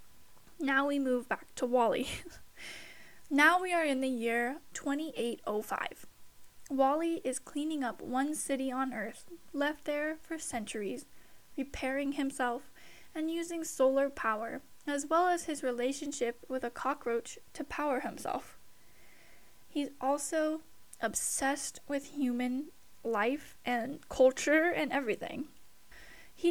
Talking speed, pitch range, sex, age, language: 120 wpm, 245-305 Hz, female, 10-29, English